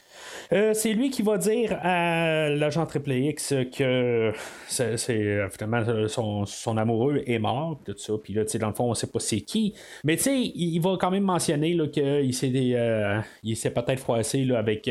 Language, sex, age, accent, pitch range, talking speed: French, male, 30-49, Canadian, 110-150 Hz, 190 wpm